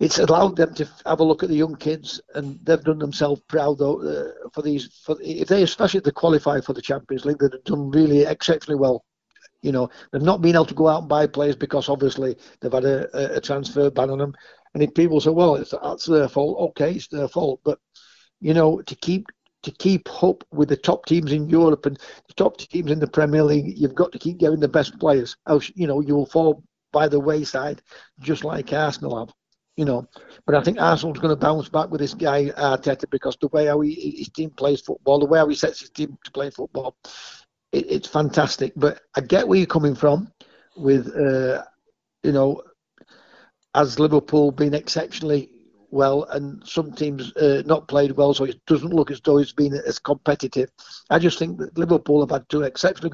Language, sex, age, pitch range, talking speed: English, male, 60-79, 140-160 Hz, 215 wpm